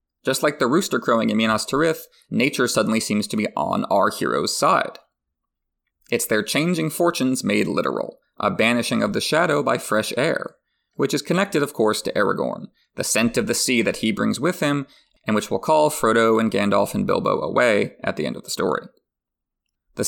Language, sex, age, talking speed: English, male, 30-49, 195 wpm